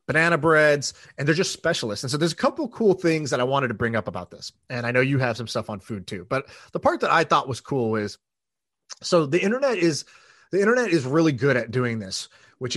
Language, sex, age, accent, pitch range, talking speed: English, male, 30-49, American, 120-165 Hz, 250 wpm